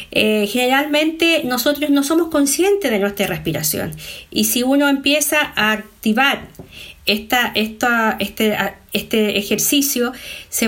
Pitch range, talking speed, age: 205-280 Hz, 120 wpm, 50-69